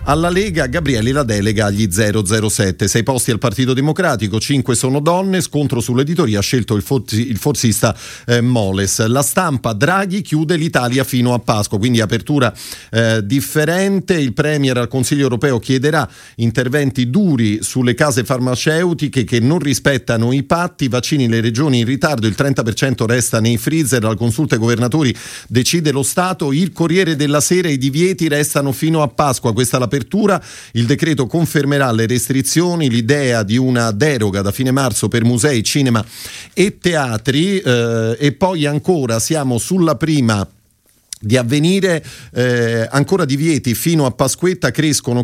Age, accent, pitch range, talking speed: 40-59, native, 115-150 Hz, 155 wpm